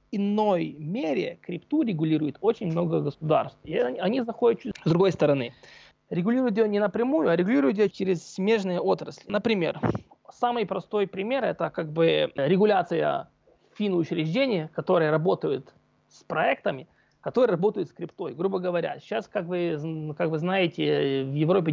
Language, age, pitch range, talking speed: Russian, 20-39, 155-200 Hz, 140 wpm